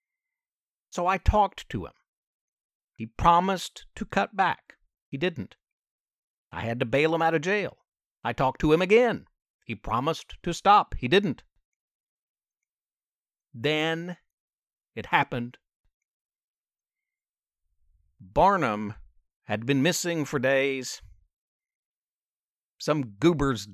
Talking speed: 105 wpm